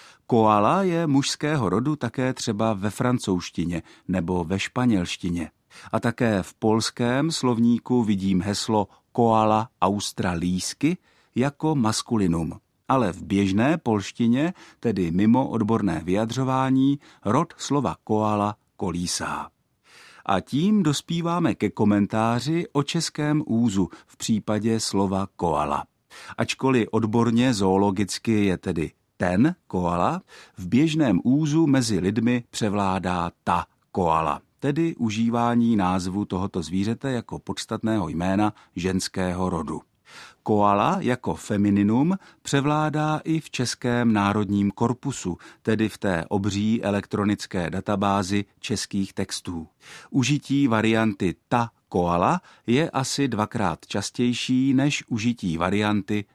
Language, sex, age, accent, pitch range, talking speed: Czech, male, 50-69, native, 95-125 Hz, 105 wpm